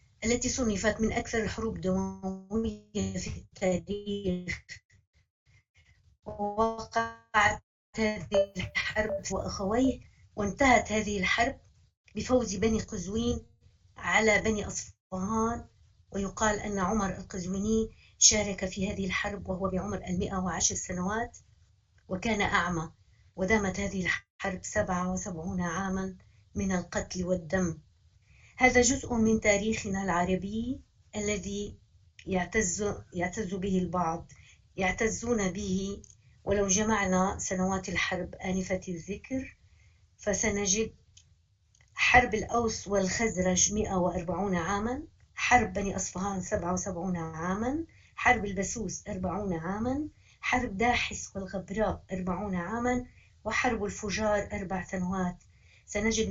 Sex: female